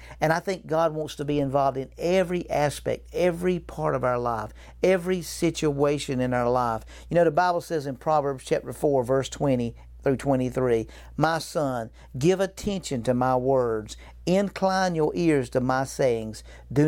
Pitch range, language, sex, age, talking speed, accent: 135-170 Hz, English, male, 50-69, 170 wpm, American